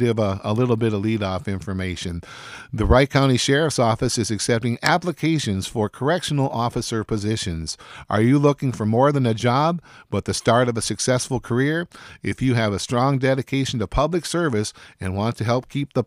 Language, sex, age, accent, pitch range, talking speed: English, male, 50-69, American, 105-135 Hz, 185 wpm